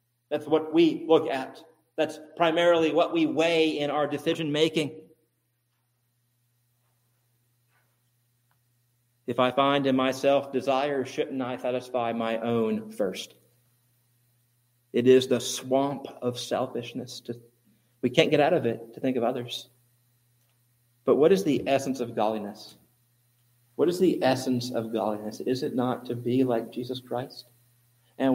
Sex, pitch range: male, 120-130 Hz